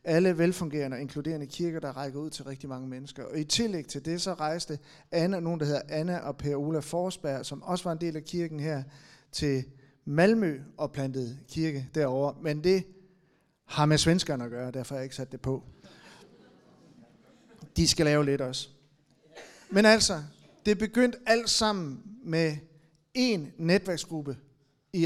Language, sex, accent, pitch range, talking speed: Danish, male, native, 145-185 Hz, 170 wpm